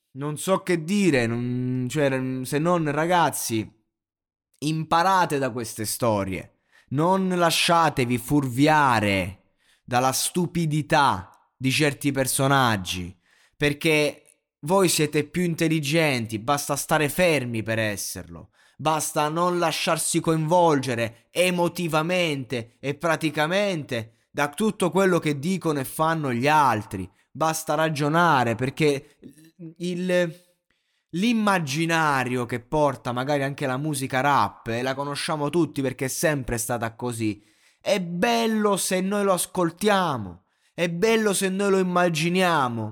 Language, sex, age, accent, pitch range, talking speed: Italian, male, 20-39, native, 125-175 Hz, 110 wpm